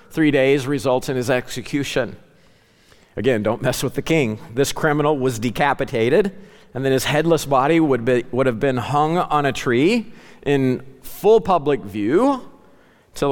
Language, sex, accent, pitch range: English, male, American, 110-140 Hz